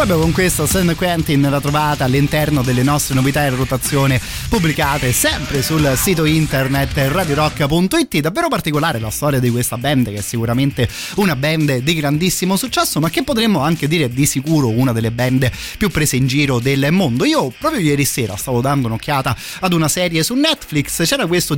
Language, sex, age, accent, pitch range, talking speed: Italian, male, 30-49, native, 125-155 Hz, 180 wpm